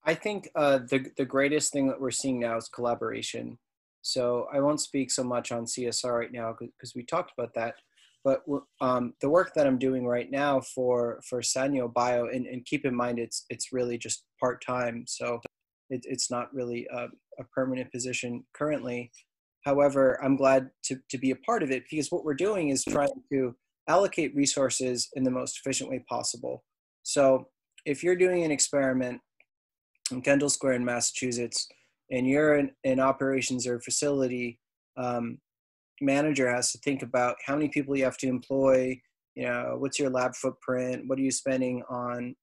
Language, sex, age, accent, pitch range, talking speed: English, male, 20-39, American, 125-140 Hz, 180 wpm